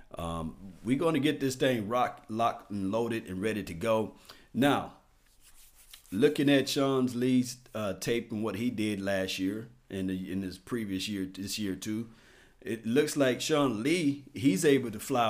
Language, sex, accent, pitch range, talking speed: English, male, American, 100-125 Hz, 180 wpm